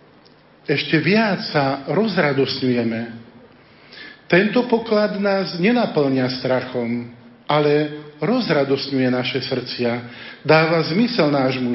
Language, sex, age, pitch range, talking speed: Slovak, male, 50-69, 135-175 Hz, 80 wpm